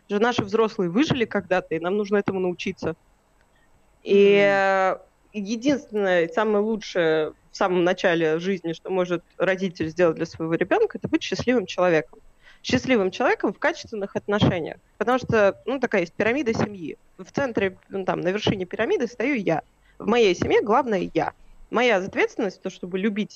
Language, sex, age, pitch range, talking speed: Russian, female, 20-39, 185-245 Hz, 155 wpm